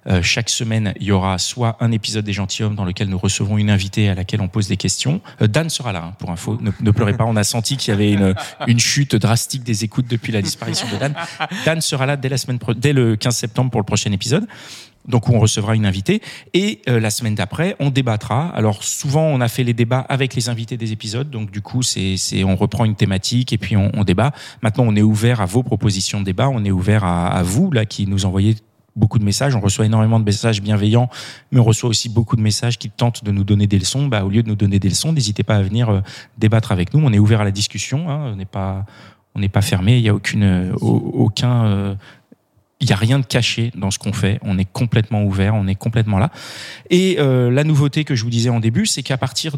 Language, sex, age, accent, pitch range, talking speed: French, male, 40-59, French, 105-125 Hz, 255 wpm